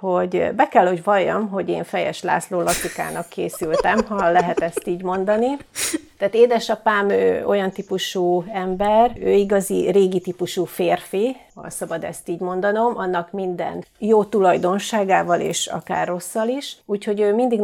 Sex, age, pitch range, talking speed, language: female, 40-59, 175-225 Hz, 145 wpm, Hungarian